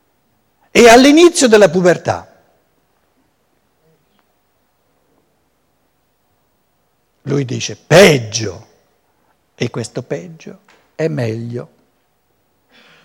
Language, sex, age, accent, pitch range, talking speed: Italian, male, 60-79, native, 145-240 Hz, 55 wpm